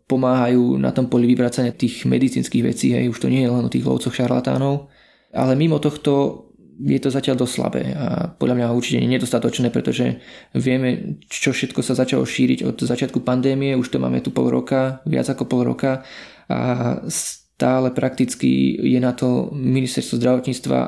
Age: 20-39